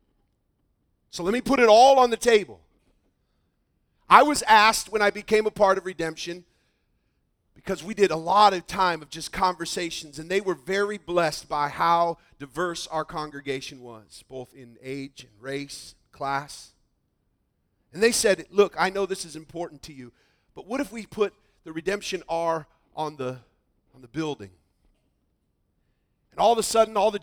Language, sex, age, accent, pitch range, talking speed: English, male, 40-59, American, 130-195 Hz, 165 wpm